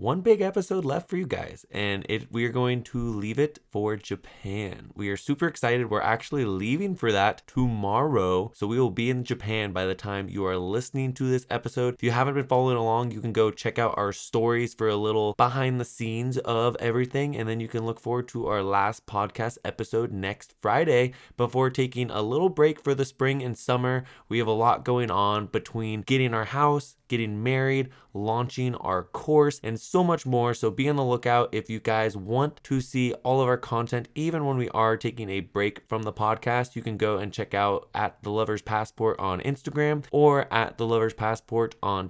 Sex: male